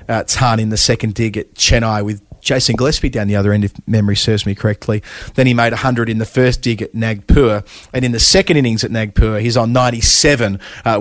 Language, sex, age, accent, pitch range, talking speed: English, male, 30-49, Australian, 105-120 Hz, 225 wpm